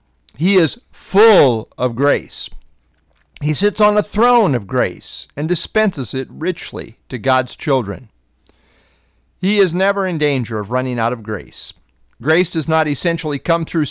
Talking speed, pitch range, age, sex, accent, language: 150 wpm, 115-180 Hz, 50-69, male, American, English